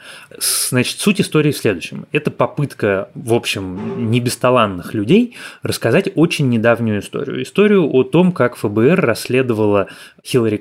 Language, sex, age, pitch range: Russian, male, 20-39, 115-155 Hz